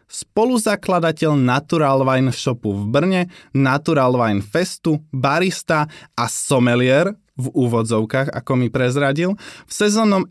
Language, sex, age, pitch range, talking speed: Slovak, male, 20-39, 120-170 Hz, 110 wpm